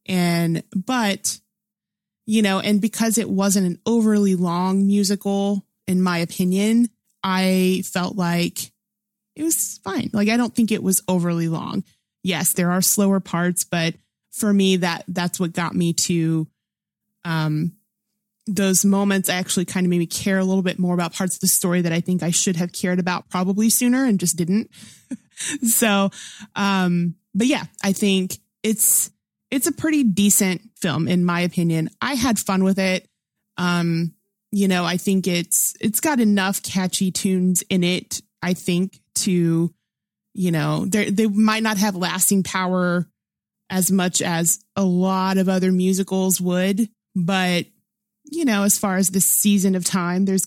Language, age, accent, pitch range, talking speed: English, 20-39, American, 180-205 Hz, 165 wpm